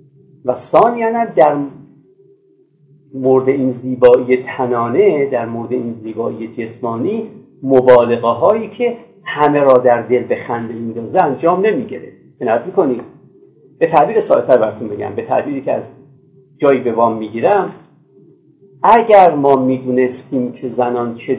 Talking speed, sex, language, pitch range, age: 120 wpm, male, Persian, 125-195 Hz, 50-69